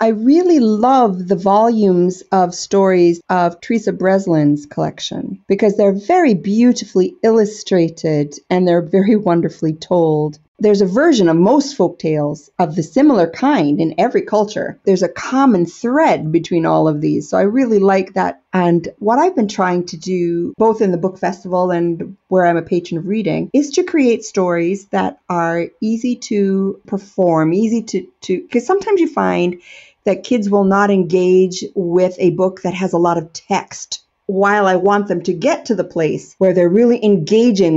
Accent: American